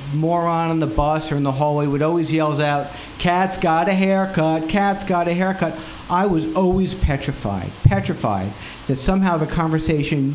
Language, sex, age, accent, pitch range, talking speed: English, male, 50-69, American, 120-155 Hz, 170 wpm